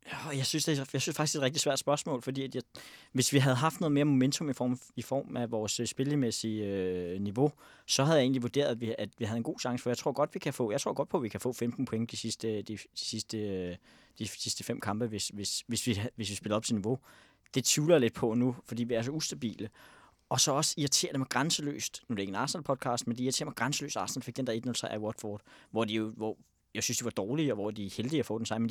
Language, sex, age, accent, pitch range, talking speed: Danish, male, 20-39, native, 110-135 Hz, 265 wpm